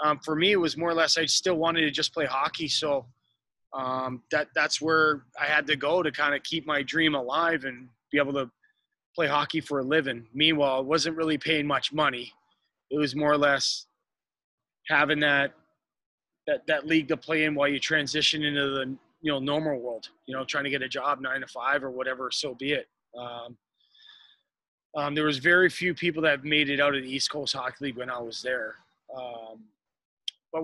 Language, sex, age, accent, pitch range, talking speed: English, male, 20-39, American, 135-160 Hz, 215 wpm